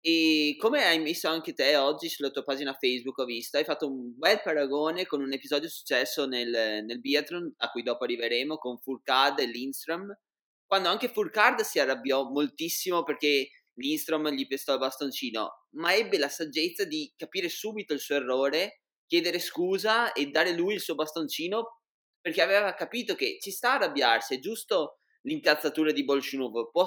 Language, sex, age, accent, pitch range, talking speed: Italian, male, 20-39, native, 135-195 Hz, 170 wpm